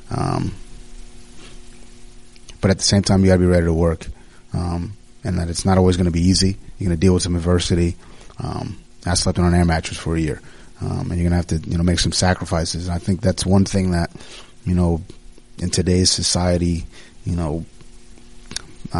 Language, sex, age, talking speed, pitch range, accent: English, male, 30-49, 210 wpm, 85-95 Hz, American